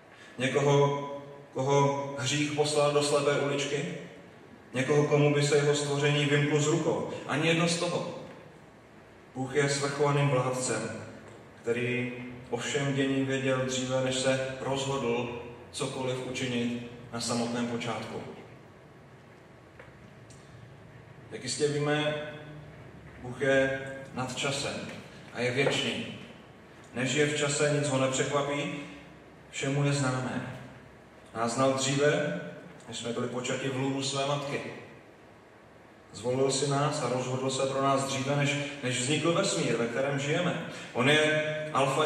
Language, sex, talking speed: Czech, male, 125 wpm